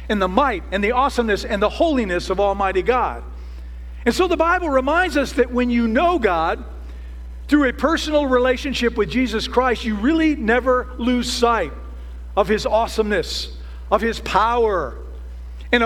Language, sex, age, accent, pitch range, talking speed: English, male, 50-69, American, 200-270 Hz, 160 wpm